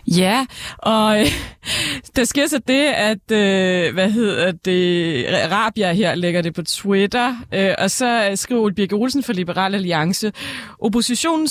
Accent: native